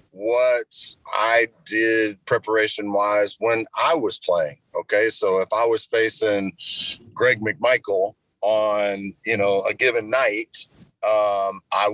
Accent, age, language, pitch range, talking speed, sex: American, 30-49, English, 105-140 Hz, 125 wpm, male